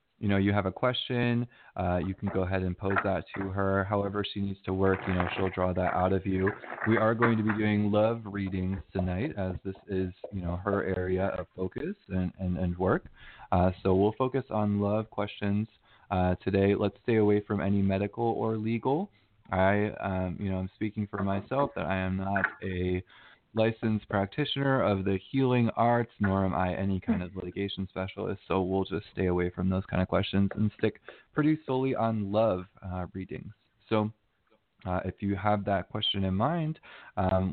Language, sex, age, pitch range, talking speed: English, male, 20-39, 95-110 Hz, 195 wpm